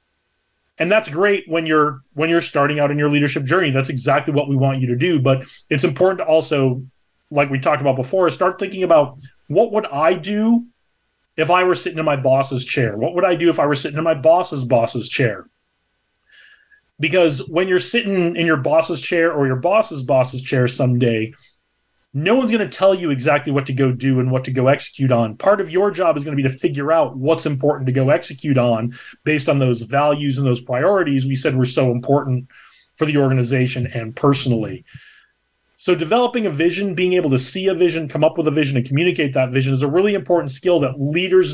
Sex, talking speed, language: male, 220 wpm, English